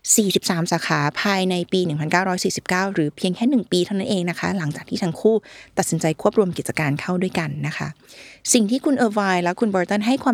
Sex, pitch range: female, 165-220 Hz